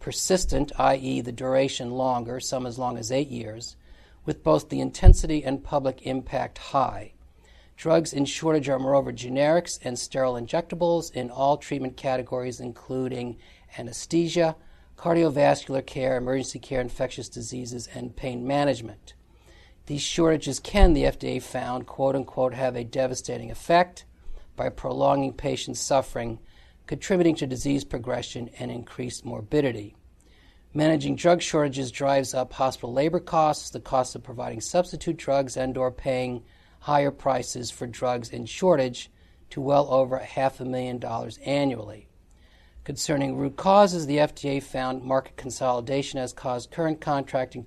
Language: English